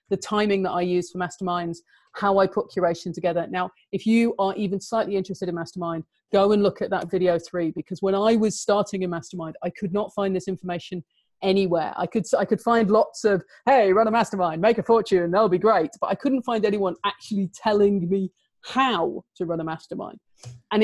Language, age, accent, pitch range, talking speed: English, 30-49, British, 185-225 Hz, 205 wpm